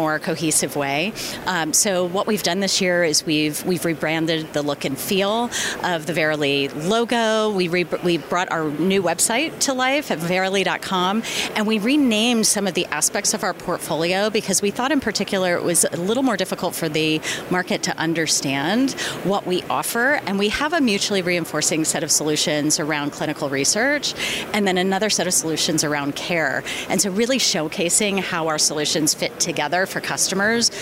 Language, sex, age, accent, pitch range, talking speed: English, female, 30-49, American, 155-200 Hz, 180 wpm